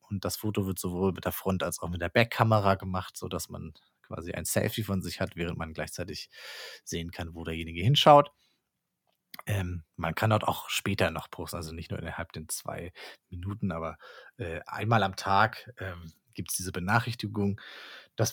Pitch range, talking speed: 95-120 Hz, 175 wpm